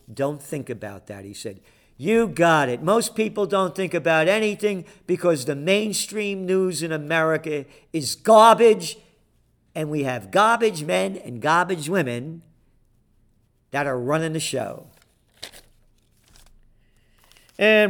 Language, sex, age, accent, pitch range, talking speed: English, male, 50-69, American, 120-190 Hz, 125 wpm